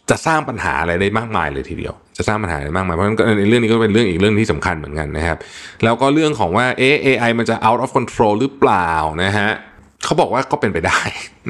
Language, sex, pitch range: Thai, male, 85-120 Hz